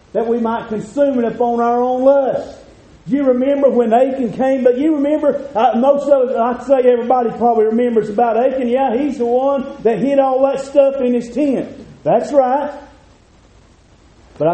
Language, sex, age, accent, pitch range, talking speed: English, male, 40-59, American, 155-230 Hz, 180 wpm